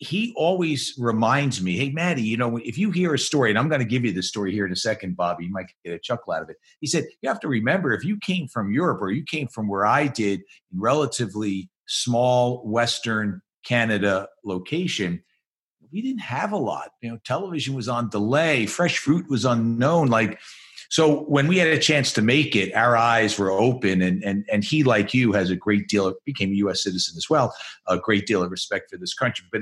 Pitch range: 100-150 Hz